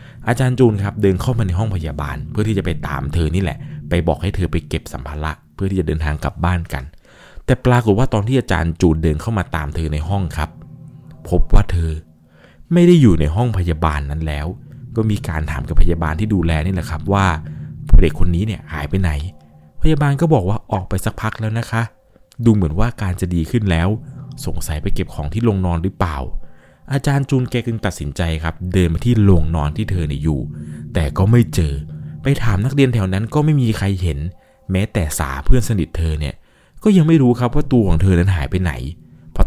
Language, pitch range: Thai, 80-115 Hz